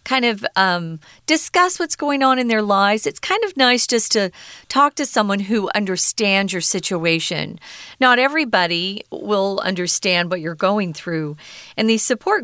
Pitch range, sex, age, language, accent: 180-235 Hz, female, 40-59, Chinese, American